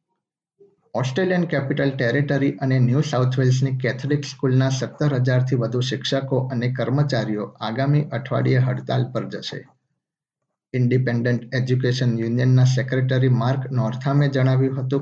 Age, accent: 50-69, native